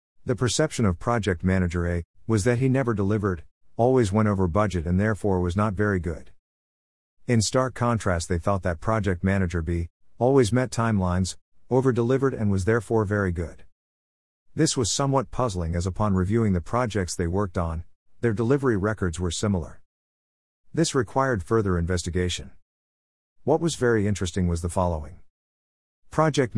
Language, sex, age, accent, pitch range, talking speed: English, male, 50-69, American, 85-110 Hz, 155 wpm